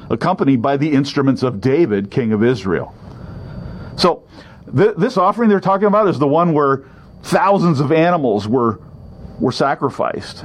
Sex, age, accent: male, 50-69, American